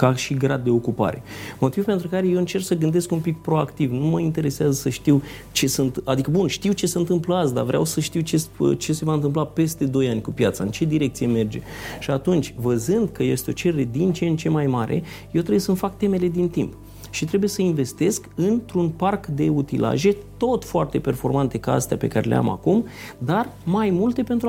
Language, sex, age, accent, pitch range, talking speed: Romanian, male, 30-49, native, 130-185 Hz, 220 wpm